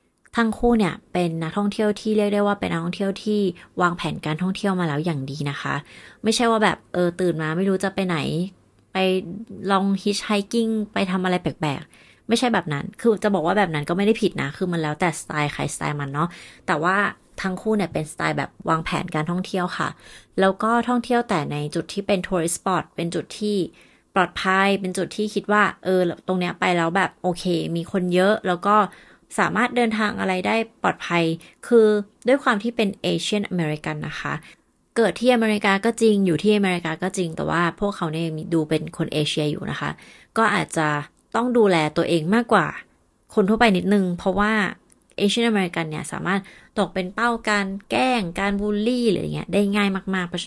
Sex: female